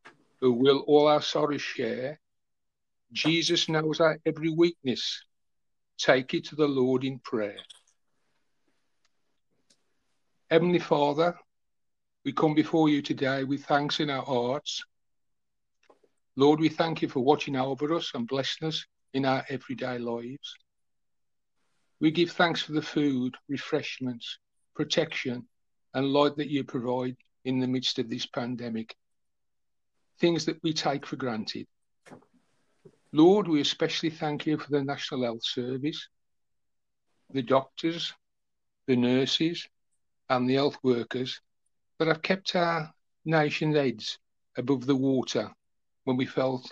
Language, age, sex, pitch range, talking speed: English, 50-69, male, 125-155 Hz, 130 wpm